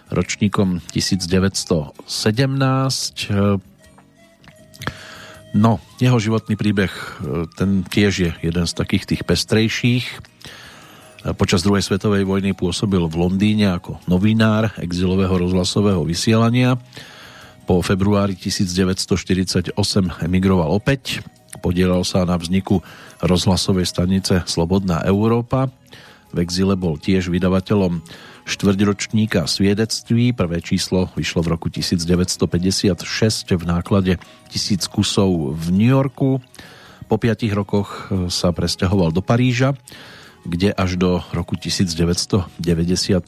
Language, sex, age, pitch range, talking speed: Slovak, male, 40-59, 90-110 Hz, 100 wpm